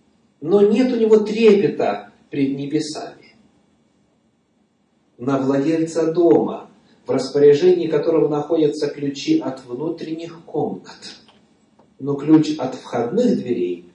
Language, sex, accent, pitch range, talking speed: Russian, male, native, 130-205 Hz, 100 wpm